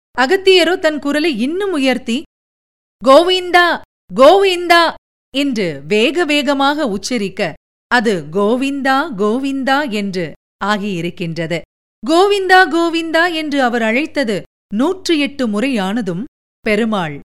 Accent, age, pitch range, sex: native, 50-69, 195-300 Hz, female